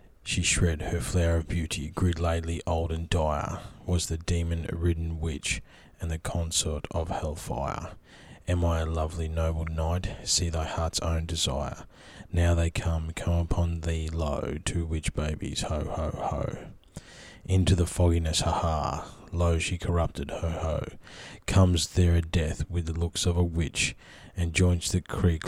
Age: 20-39